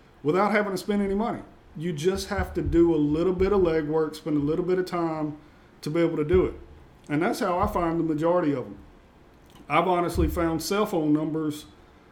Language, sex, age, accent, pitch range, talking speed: English, male, 40-59, American, 150-185 Hz, 215 wpm